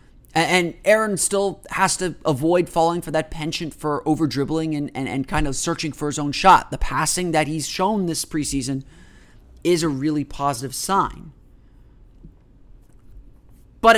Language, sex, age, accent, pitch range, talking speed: English, male, 30-49, American, 135-180 Hz, 150 wpm